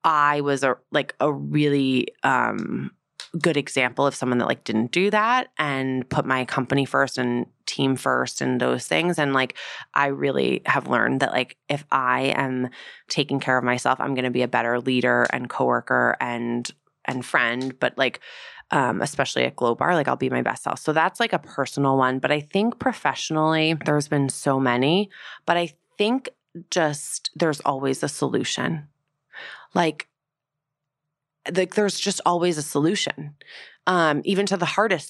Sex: female